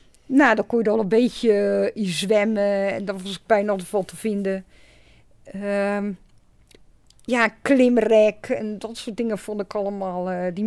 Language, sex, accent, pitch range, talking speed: Dutch, female, Dutch, 200-245 Hz, 180 wpm